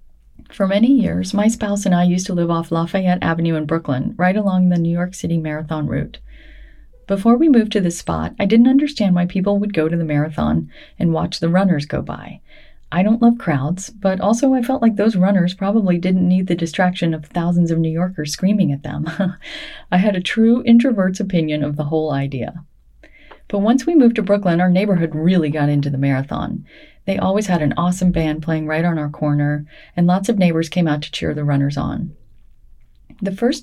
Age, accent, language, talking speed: 30-49, American, English, 205 wpm